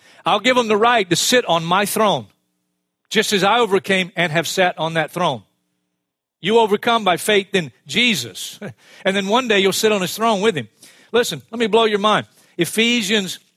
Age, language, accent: 50-69, English, American